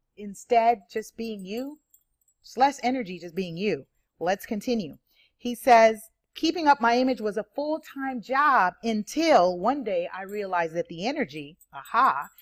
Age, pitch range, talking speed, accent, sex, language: 40-59, 165-225 Hz, 150 wpm, American, female, English